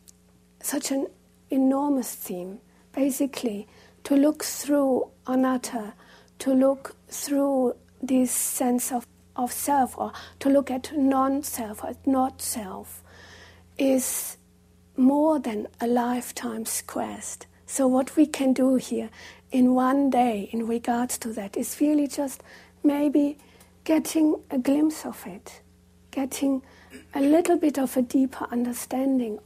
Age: 60-79